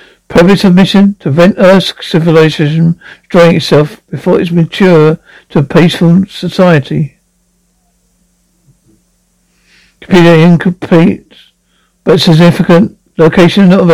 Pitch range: 165-185 Hz